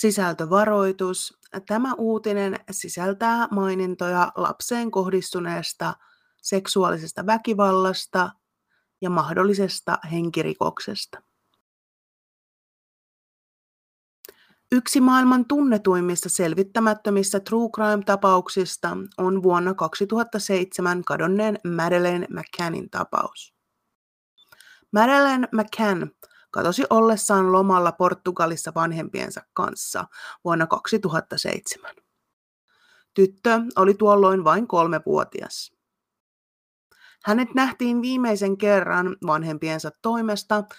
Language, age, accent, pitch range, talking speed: Finnish, 30-49, native, 180-220 Hz, 70 wpm